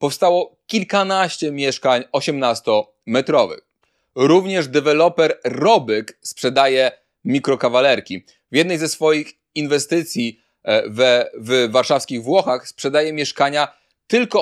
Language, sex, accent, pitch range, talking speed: Polish, male, native, 125-165 Hz, 85 wpm